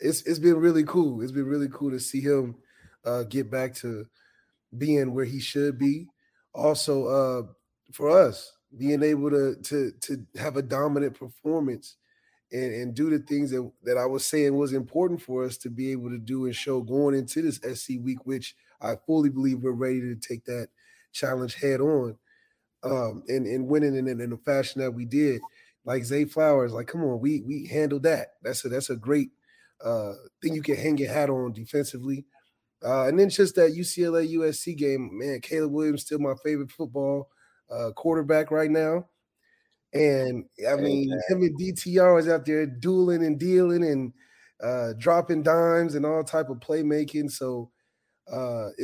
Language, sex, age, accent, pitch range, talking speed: English, male, 20-39, American, 130-155 Hz, 185 wpm